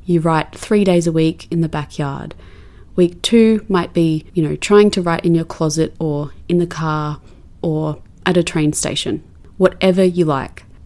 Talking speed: 180 wpm